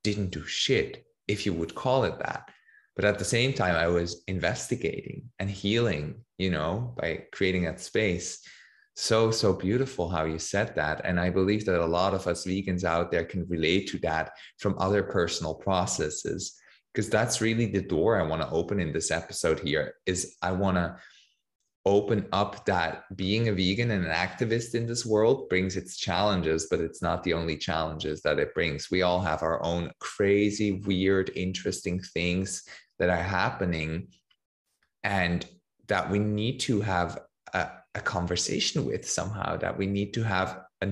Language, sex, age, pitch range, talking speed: English, male, 20-39, 85-105 Hz, 175 wpm